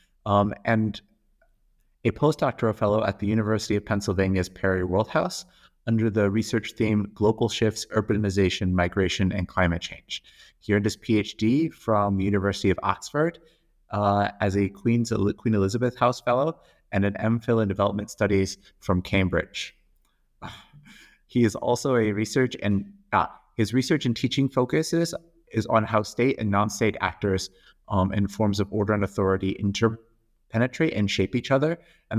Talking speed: 150 wpm